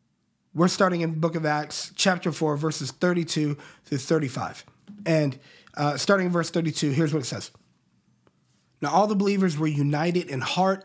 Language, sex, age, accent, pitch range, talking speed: English, male, 30-49, American, 150-190 Hz, 170 wpm